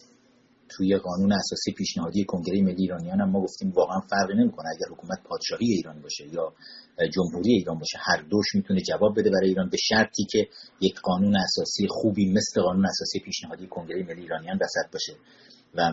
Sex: male